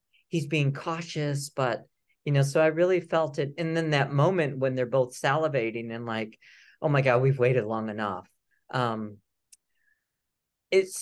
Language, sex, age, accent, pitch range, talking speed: English, male, 40-59, American, 135-180 Hz, 165 wpm